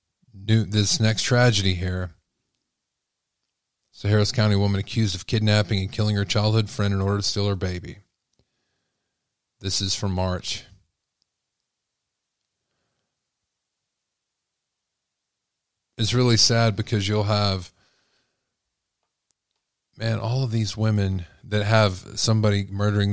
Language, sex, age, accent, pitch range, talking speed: English, male, 40-59, American, 95-110 Hz, 110 wpm